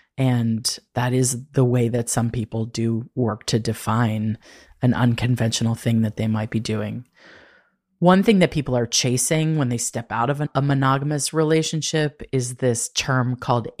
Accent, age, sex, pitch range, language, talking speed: American, 30-49, female, 115-135 Hz, English, 165 wpm